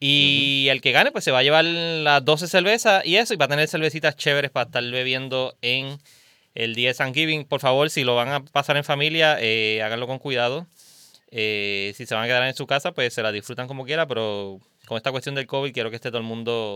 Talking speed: 240 wpm